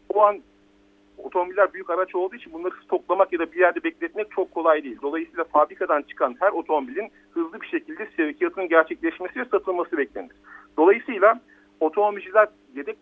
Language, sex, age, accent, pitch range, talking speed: Turkish, male, 50-69, native, 145-210 Hz, 150 wpm